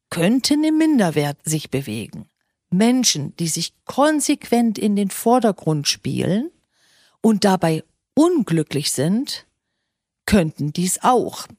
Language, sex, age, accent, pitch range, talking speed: German, female, 40-59, German, 185-250 Hz, 105 wpm